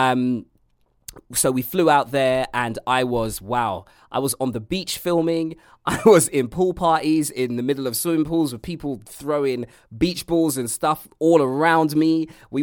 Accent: British